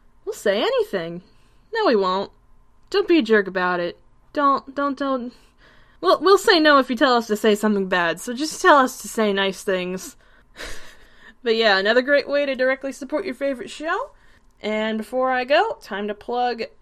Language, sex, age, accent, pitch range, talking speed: English, female, 10-29, American, 215-275 Hz, 185 wpm